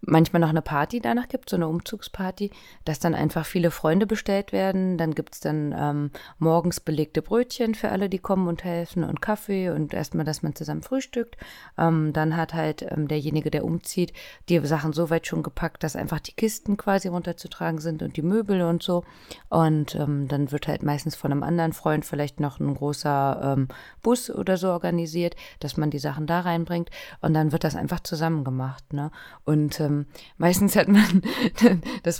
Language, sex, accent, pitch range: Japanese, female, German, 150-180 Hz